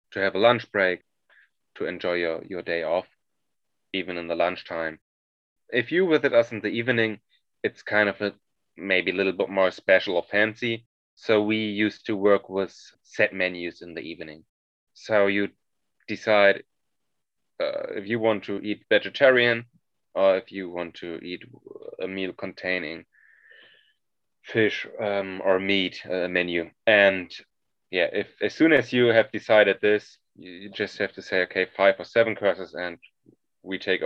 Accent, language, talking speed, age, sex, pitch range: German, English, 165 wpm, 30-49, male, 95-110 Hz